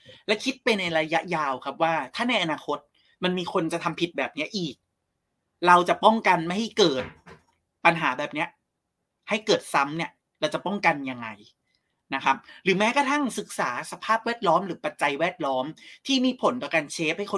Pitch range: 145-200 Hz